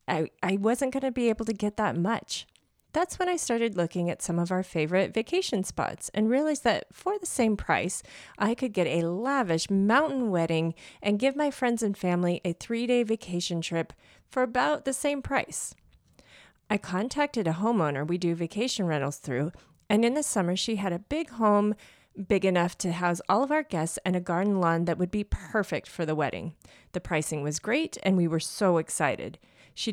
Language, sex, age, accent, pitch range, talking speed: English, female, 30-49, American, 170-230 Hz, 200 wpm